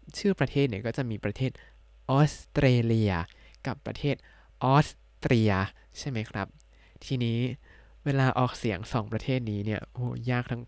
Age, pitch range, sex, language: 20-39, 110-145 Hz, male, Thai